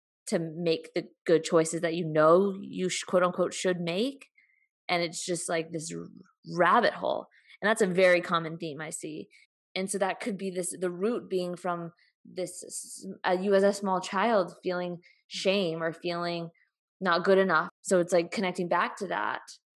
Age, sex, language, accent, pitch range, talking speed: 20-39, female, English, American, 175-210 Hz, 180 wpm